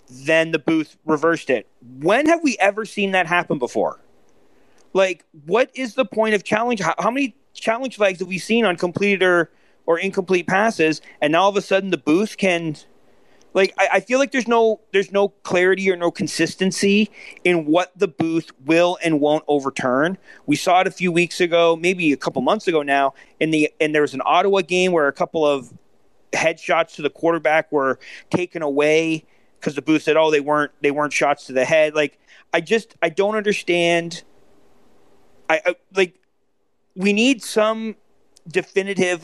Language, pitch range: English, 160-200 Hz